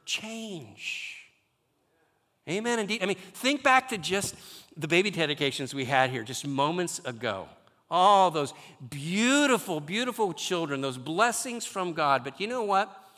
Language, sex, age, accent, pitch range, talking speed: English, male, 50-69, American, 120-180 Hz, 140 wpm